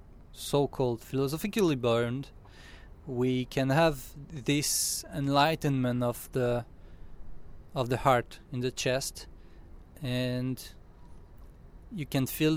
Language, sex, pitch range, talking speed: English, male, 100-145 Hz, 95 wpm